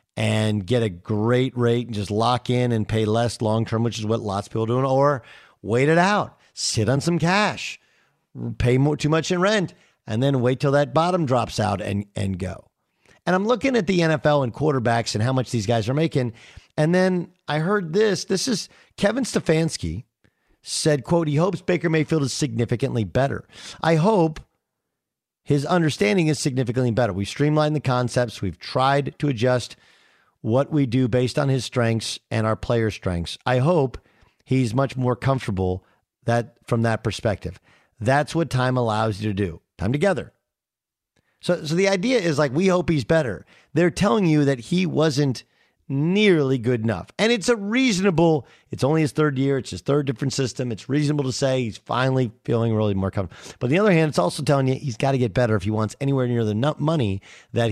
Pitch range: 115-160 Hz